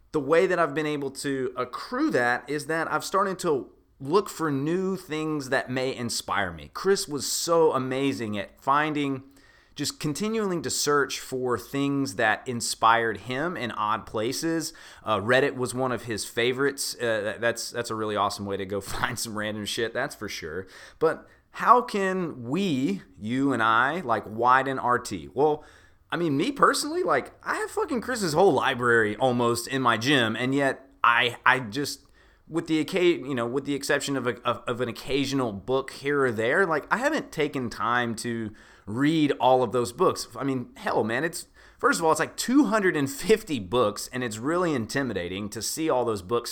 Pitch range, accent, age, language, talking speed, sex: 115-155 Hz, American, 30-49, English, 185 wpm, male